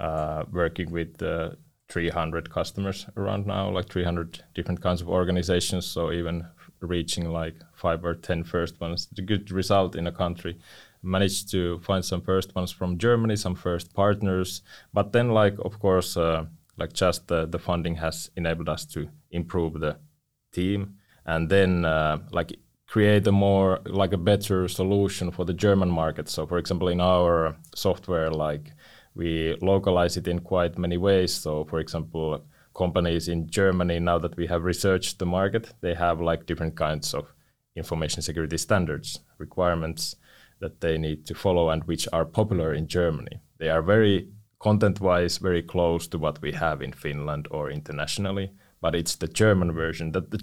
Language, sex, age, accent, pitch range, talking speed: Finnish, male, 20-39, native, 85-95 Hz, 170 wpm